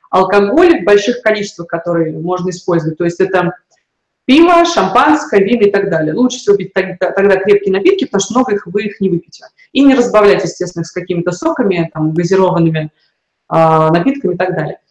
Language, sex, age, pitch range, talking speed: Russian, female, 20-39, 180-230 Hz, 175 wpm